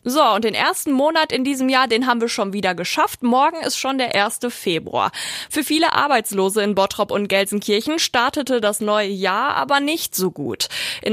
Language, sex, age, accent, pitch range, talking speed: German, female, 20-39, German, 195-255 Hz, 195 wpm